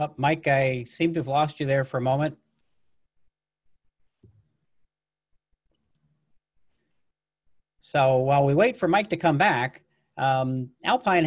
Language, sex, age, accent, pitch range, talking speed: English, male, 50-69, American, 125-150 Hz, 115 wpm